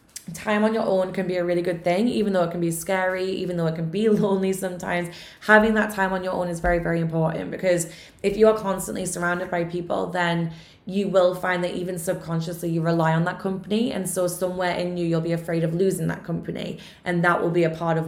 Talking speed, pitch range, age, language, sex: 240 wpm, 170-195 Hz, 20-39, English, female